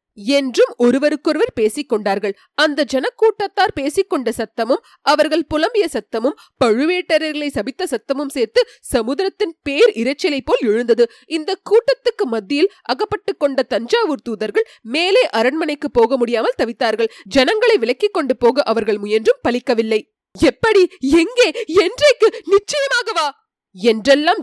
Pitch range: 235-360 Hz